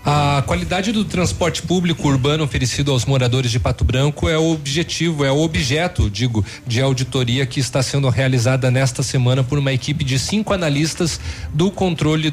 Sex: male